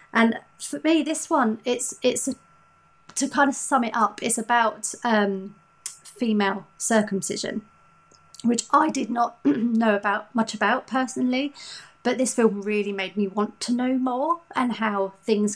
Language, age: English, 30-49